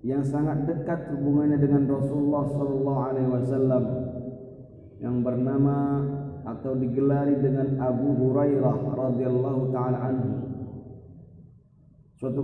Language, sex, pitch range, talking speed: Indonesian, male, 130-155 Hz, 85 wpm